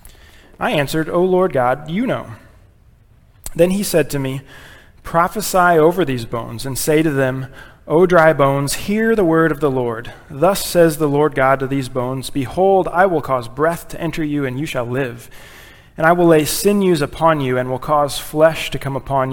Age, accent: 30-49, American